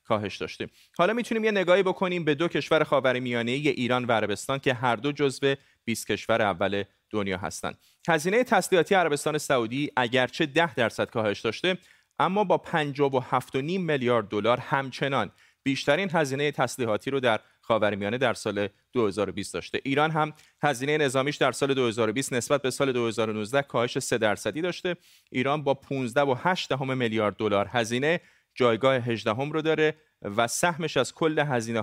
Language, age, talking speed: Persian, 30-49, 155 wpm